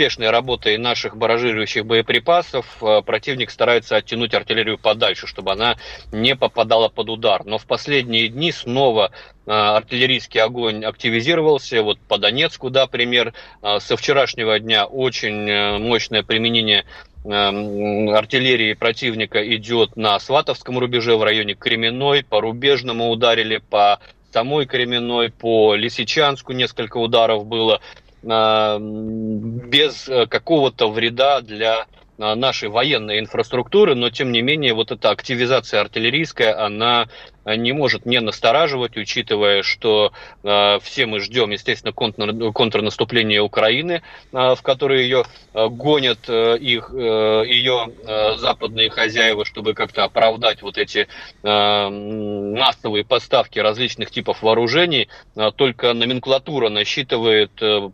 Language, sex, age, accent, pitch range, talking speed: Russian, male, 30-49, native, 105-125 Hz, 115 wpm